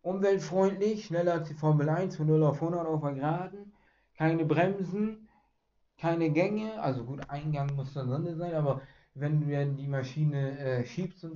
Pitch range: 145-170 Hz